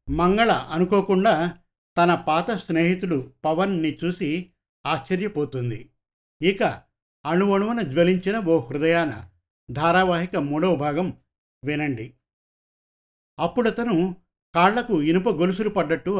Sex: male